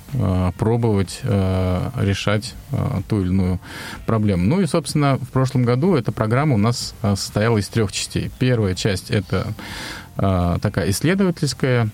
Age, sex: 20-39, male